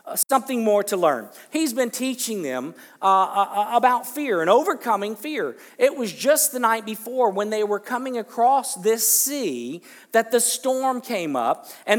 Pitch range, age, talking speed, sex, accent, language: 205-260 Hz, 50-69, 170 wpm, male, American, English